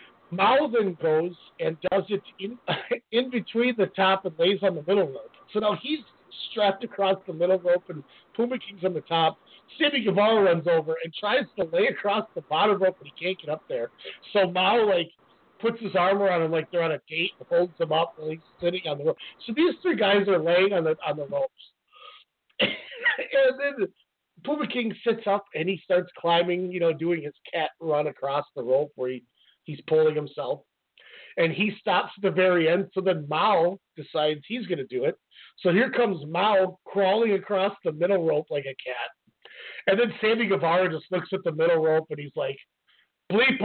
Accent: American